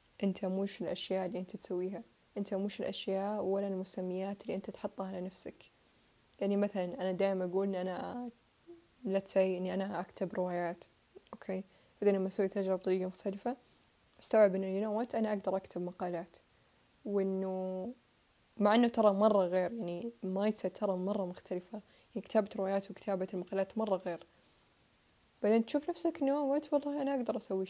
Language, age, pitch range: Arabic, 10-29, 190-215 Hz